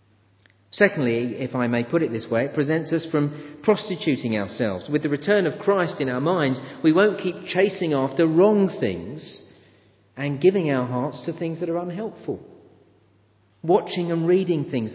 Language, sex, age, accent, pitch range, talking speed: English, male, 40-59, British, 115-170 Hz, 170 wpm